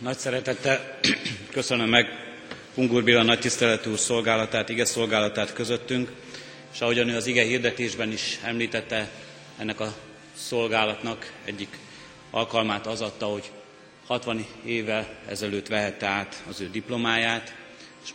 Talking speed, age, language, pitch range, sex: 115 wpm, 30-49, Hungarian, 105-120 Hz, male